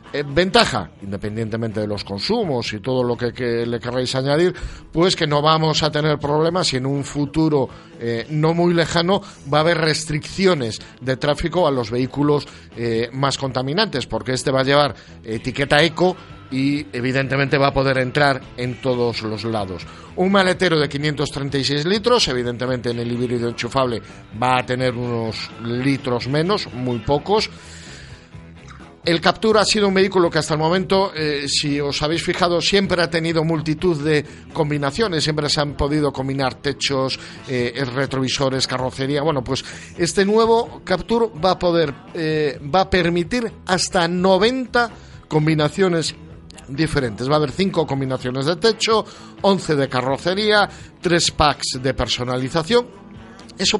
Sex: male